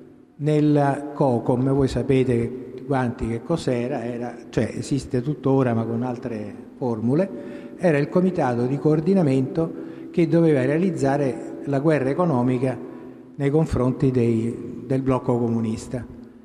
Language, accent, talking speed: Italian, native, 115 wpm